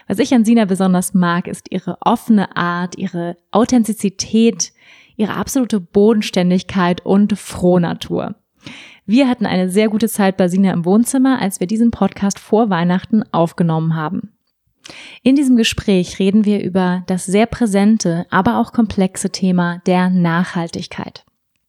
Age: 20-39